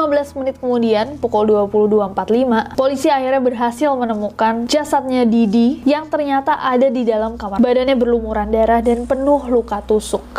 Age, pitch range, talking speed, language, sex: 20-39, 230-275 Hz, 140 wpm, Indonesian, female